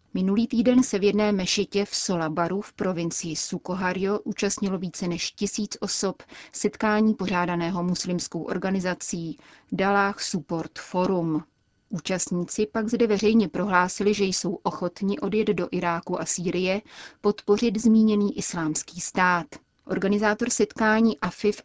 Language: Czech